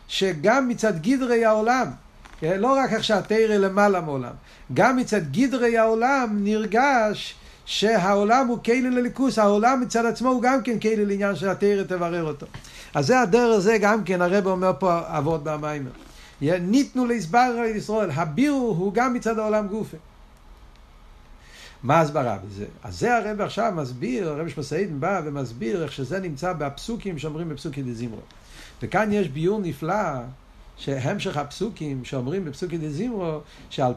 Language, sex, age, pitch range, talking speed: Hebrew, male, 60-79, 150-215 Hz, 145 wpm